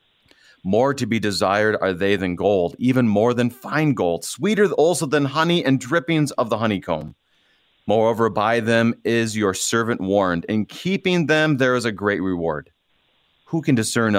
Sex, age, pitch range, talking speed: male, 30-49, 95-130 Hz, 170 wpm